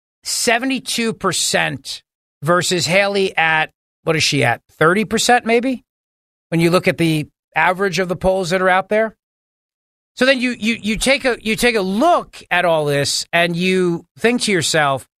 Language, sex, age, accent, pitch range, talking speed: English, male, 40-59, American, 150-215 Hz, 175 wpm